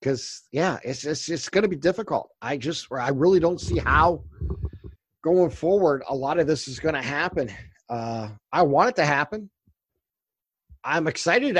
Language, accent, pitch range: English, American, 135-175 Hz